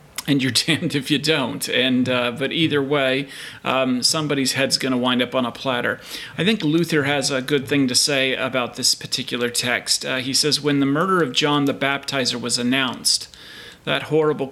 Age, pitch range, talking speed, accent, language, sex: 40-59, 130-155 Hz, 200 wpm, American, English, male